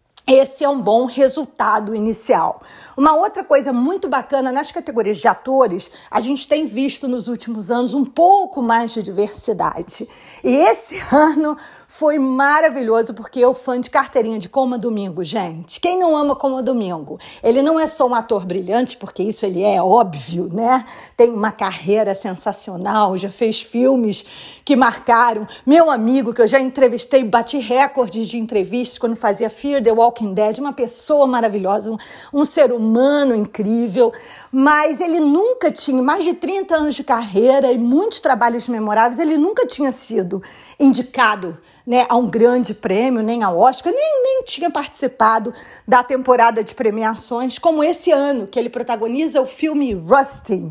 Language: English